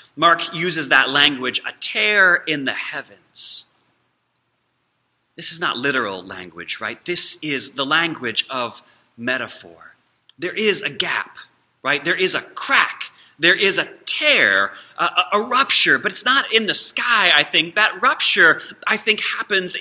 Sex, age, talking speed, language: male, 30-49, 155 wpm, English